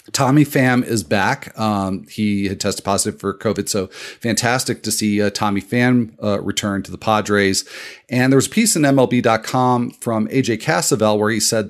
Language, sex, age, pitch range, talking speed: English, male, 40-59, 105-135 Hz, 185 wpm